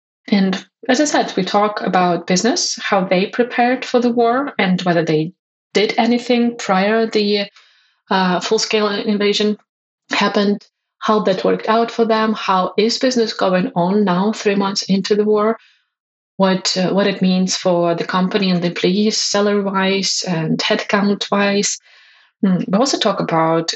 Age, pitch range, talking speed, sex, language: 20-39, 180-220 Hz, 150 wpm, female, English